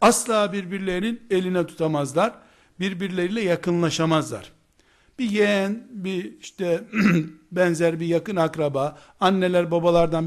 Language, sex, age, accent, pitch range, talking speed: Turkish, male, 60-79, native, 165-215 Hz, 95 wpm